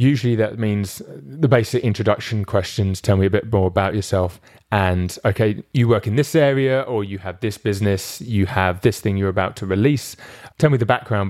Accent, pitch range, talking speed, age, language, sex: British, 100-115 Hz, 200 wpm, 30-49, English, male